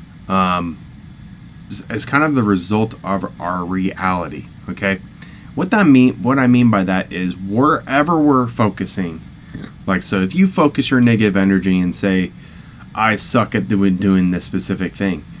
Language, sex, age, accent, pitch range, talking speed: English, male, 20-39, American, 95-115 Hz, 160 wpm